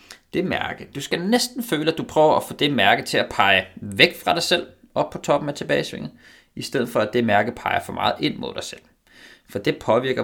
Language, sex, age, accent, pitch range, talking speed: Danish, male, 20-39, native, 100-130 Hz, 240 wpm